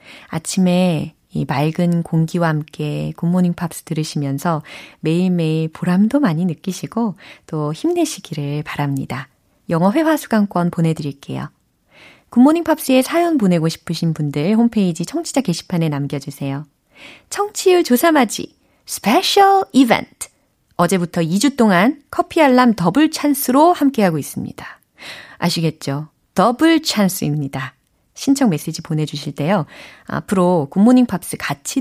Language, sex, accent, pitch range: Korean, female, native, 160-255 Hz